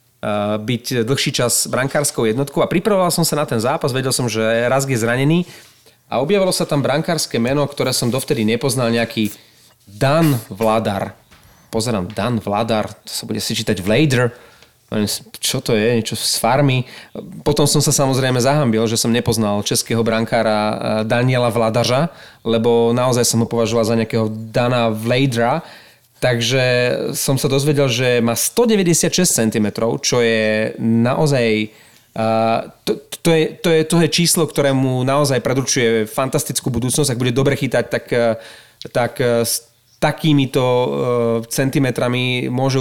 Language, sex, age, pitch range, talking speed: Slovak, male, 30-49, 115-150 Hz, 140 wpm